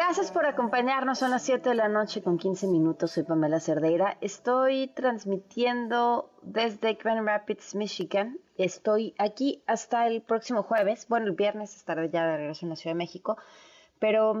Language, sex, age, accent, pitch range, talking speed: Spanish, female, 30-49, Mexican, 170-225 Hz, 165 wpm